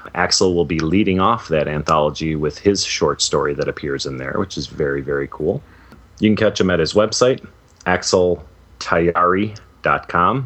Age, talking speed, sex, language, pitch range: 30-49, 160 wpm, male, English, 80-90 Hz